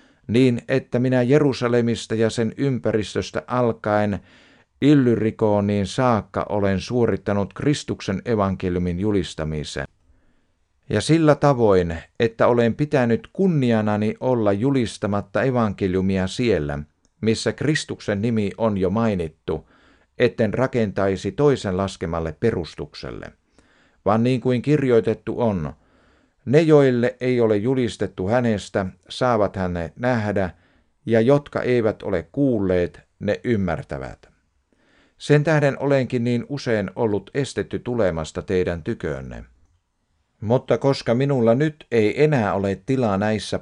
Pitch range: 95-125 Hz